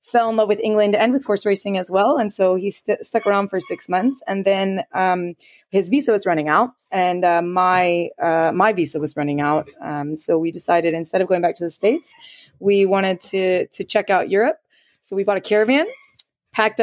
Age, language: 20-39, English